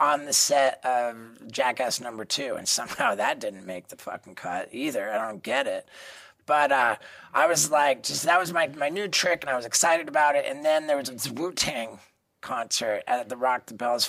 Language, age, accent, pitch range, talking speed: English, 30-49, American, 130-170 Hz, 215 wpm